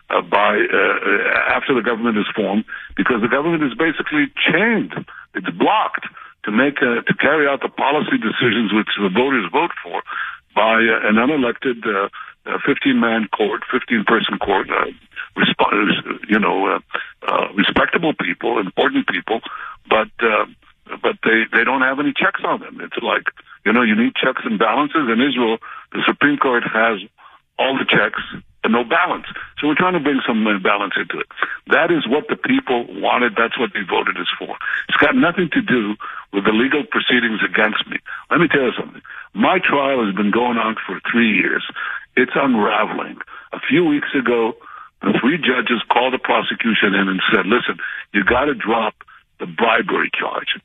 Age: 60-79